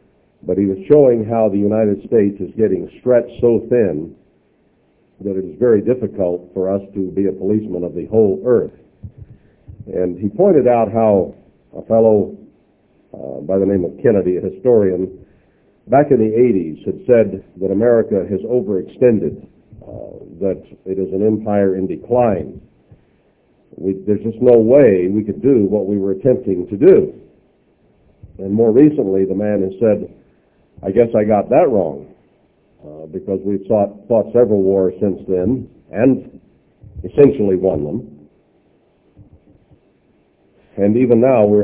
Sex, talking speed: male, 150 wpm